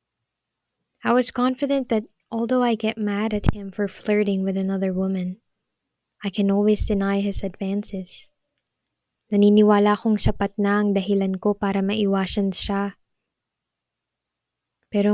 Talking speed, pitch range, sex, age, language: 120 wpm, 195-215 Hz, female, 10-29, English